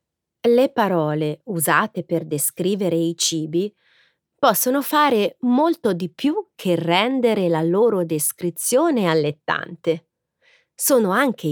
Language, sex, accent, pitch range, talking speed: Italian, female, native, 160-230 Hz, 105 wpm